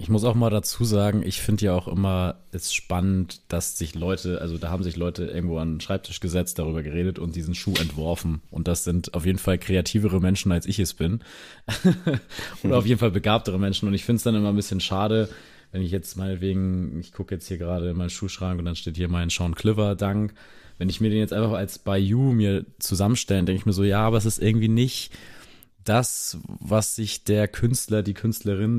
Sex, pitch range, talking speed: male, 90-105 Hz, 220 wpm